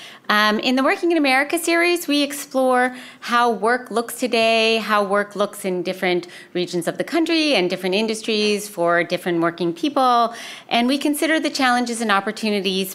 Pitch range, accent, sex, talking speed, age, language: 170-230 Hz, American, female, 165 wpm, 40-59, English